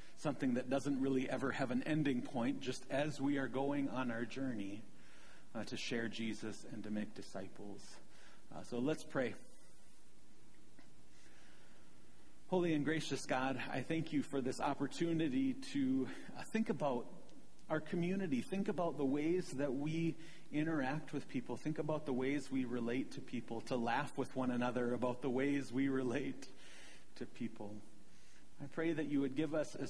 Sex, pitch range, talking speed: male, 120-145 Hz, 165 wpm